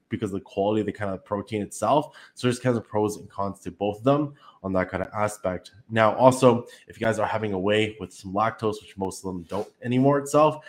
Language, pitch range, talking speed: English, 95-115 Hz, 255 wpm